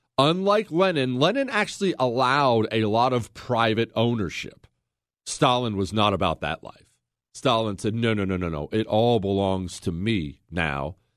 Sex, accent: male, American